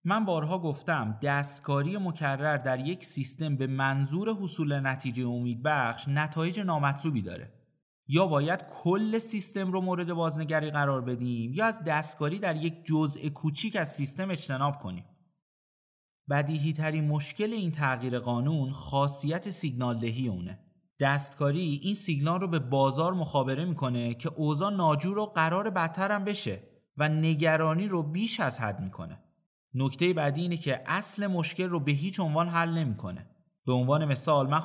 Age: 30-49